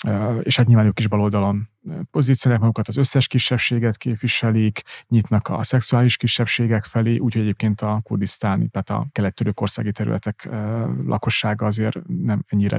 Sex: male